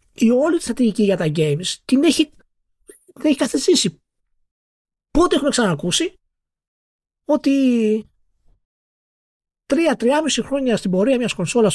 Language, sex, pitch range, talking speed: Greek, male, 160-260 Hz, 105 wpm